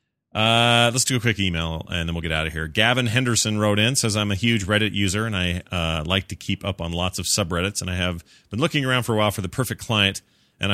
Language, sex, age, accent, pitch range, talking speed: English, male, 30-49, American, 85-110 Hz, 270 wpm